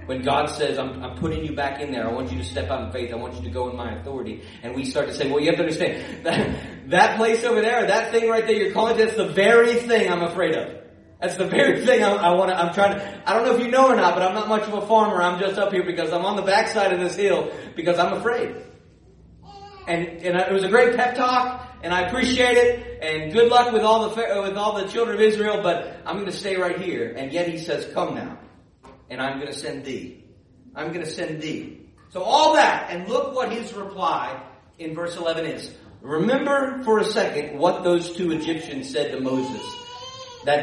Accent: American